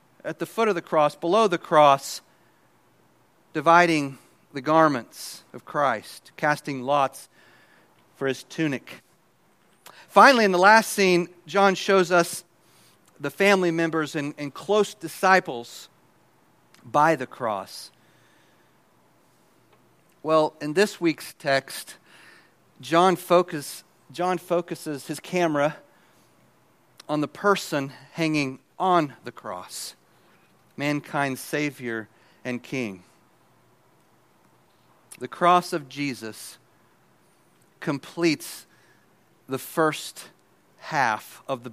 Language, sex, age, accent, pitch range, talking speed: English, male, 40-59, American, 135-175 Hz, 100 wpm